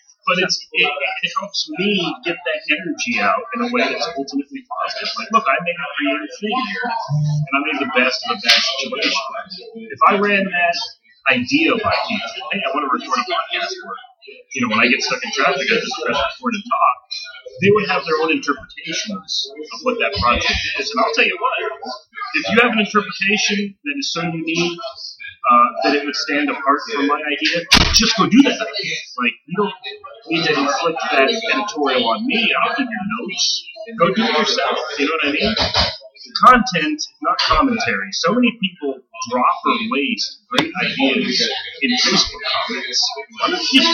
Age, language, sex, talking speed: 30-49, English, male, 190 wpm